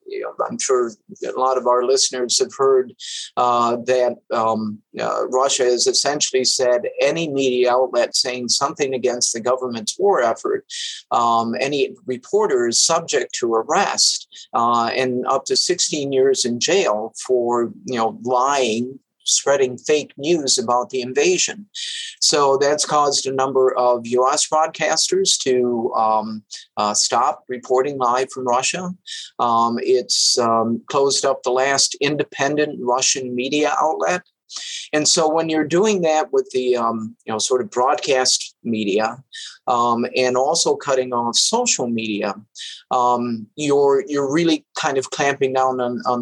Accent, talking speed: American, 145 wpm